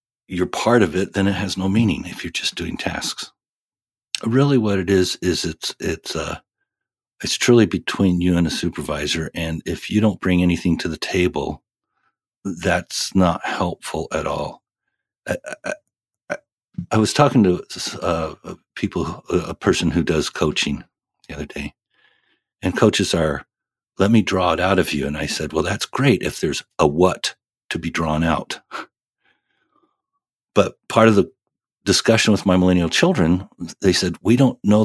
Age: 50-69